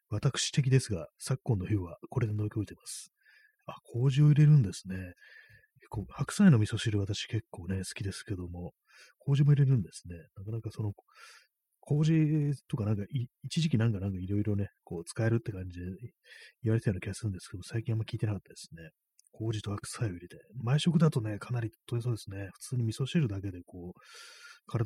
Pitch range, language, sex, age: 95-130 Hz, Japanese, male, 30-49